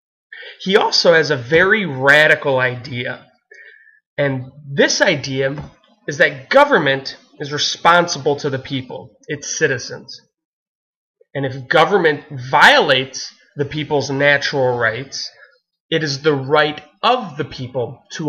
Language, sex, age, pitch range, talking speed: English, male, 20-39, 140-180 Hz, 120 wpm